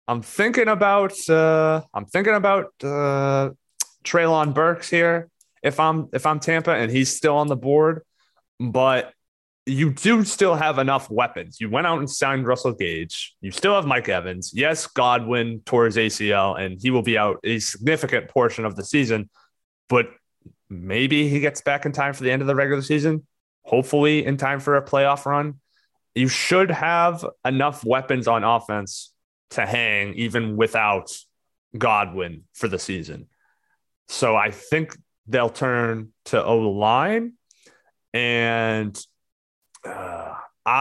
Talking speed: 150 wpm